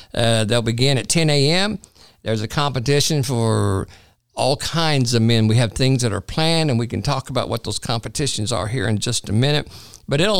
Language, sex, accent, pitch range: English, male, American, 115-150 Hz